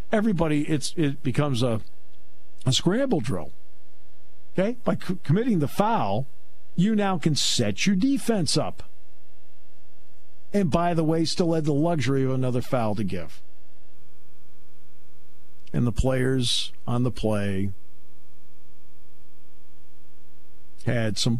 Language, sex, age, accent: English, male, 50-69, American